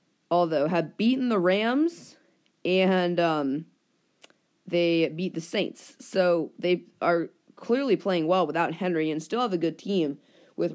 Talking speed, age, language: 145 wpm, 20-39, English